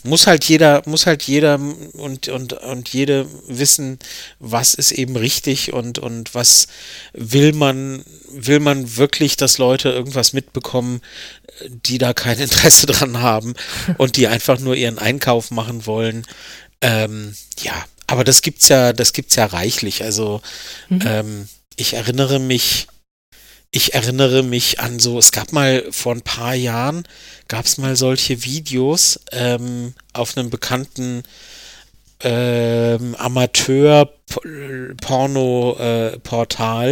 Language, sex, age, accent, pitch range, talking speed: German, male, 40-59, German, 115-135 Hz, 130 wpm